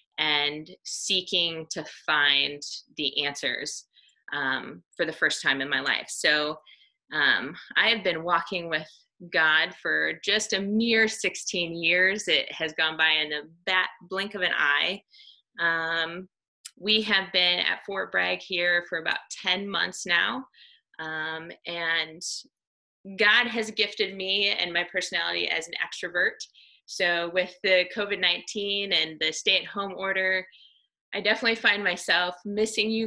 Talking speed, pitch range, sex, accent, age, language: 145 wpm, 165-215 Hz, female, American, 20-39, English